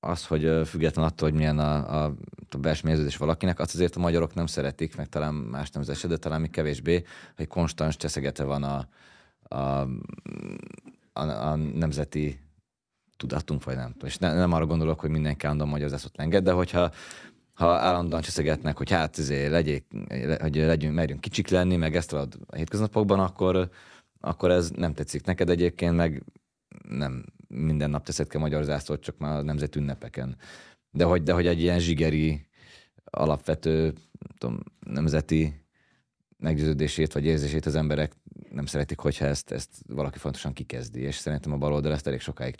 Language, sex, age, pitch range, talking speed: Hungarian, male, 30-49, 70-85 Hz, 165 wpm